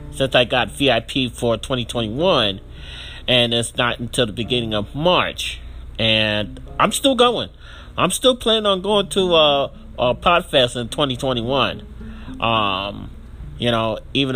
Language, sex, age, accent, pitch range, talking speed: English, male, 30-49, American, 100-135 Hz, 140 wpm